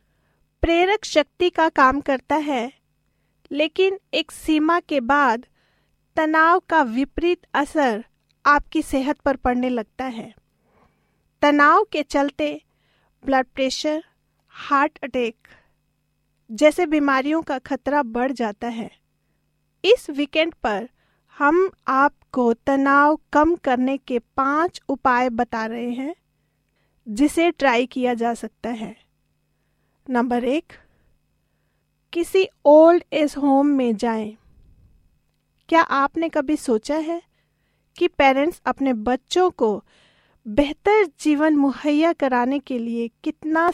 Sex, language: female, Hindi